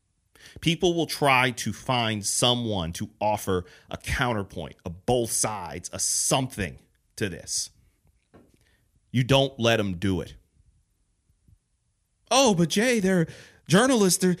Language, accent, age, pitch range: English, American, 40-59, 95-135 Hz